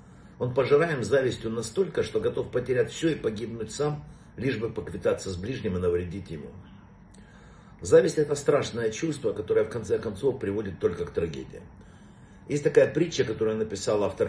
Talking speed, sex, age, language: 155 wpm, male, 60-79, Russian